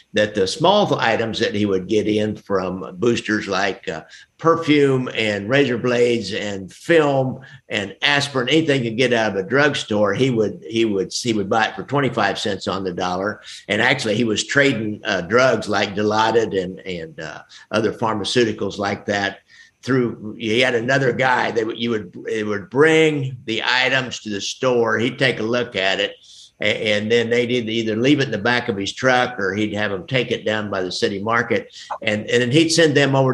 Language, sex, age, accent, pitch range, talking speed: English, male, 50-69, American, 100-130 Hz, 205 wpm